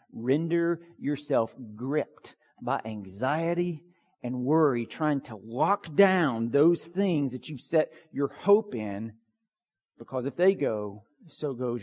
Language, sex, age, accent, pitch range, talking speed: English, male, 40-59, American, 115-190 Hz, 125 wpm